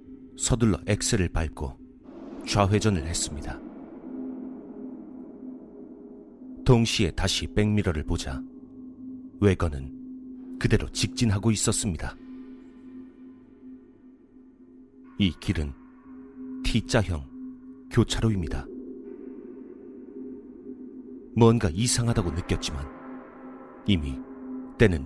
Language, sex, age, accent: Korean, male, 40-59, native